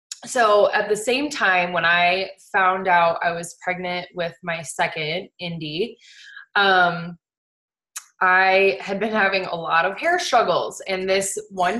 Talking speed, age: 145 wpm, 20-39